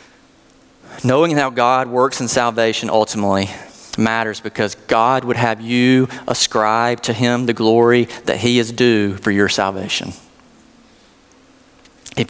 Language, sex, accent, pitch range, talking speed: English, male, American, 120-195 Hz, 125 wpm